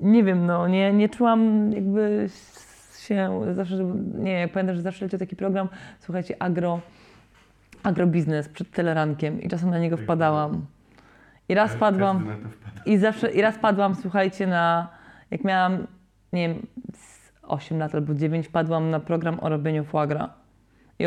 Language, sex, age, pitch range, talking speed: Polish, female, 20-39, 170-210 Hz, 150 wpm